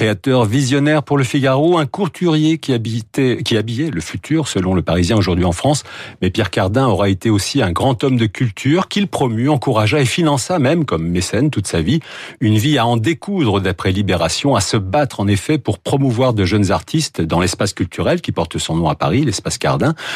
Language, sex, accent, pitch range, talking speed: French, male, French, 100-140 Hz, 200 wpm